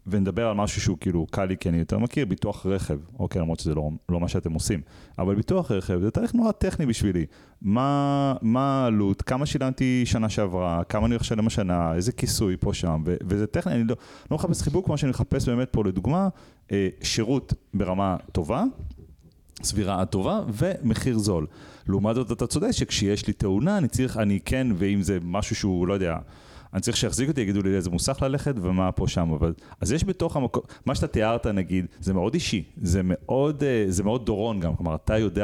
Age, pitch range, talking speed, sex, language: 30-49, 95-125 Hz, 195 wpm, male, Hebrew